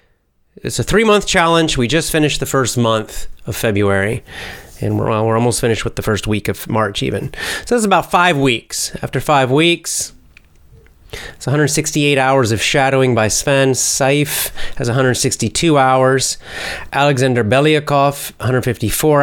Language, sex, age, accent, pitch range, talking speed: English, male, 30-49, American, 115-155 Hz, 150 wpm